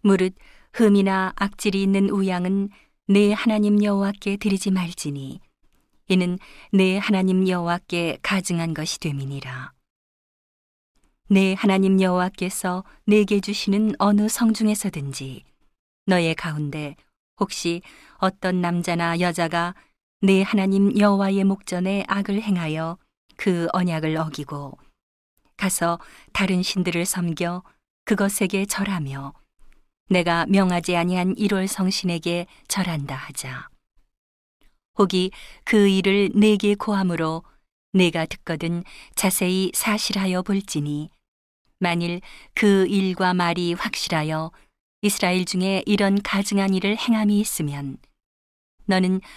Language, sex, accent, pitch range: Korean, female, native, 170-200 Hz